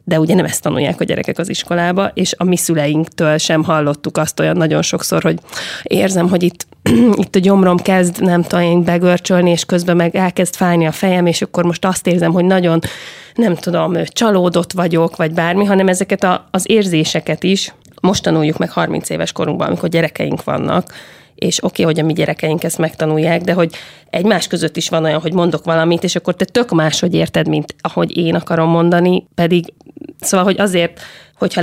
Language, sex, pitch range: Hungarian, female, 160-180 Hz